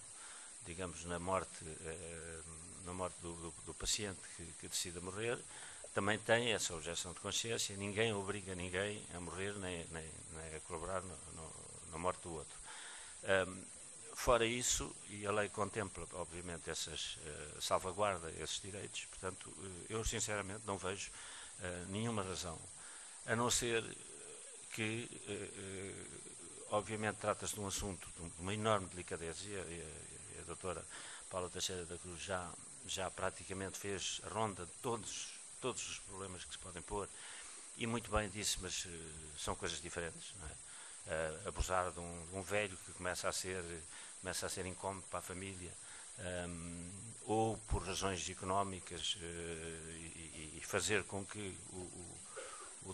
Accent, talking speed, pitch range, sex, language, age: Portuguese, 145 wpm, 85-100 Hz, male, Portuguese, 50-69